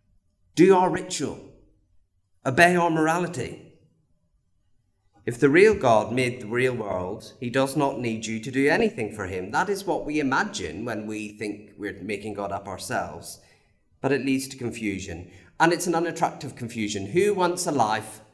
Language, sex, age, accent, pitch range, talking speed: English, male, 40-59, British, 100-135 Hz, 165 wpm